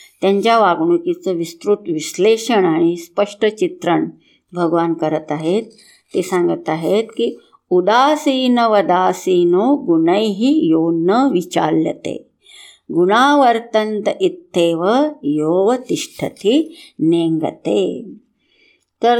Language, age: Hindi, 50-69